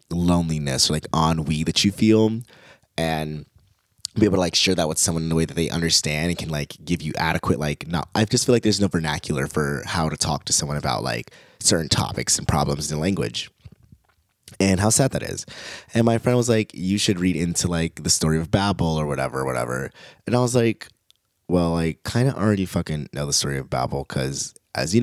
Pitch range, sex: 75-95 Hz, male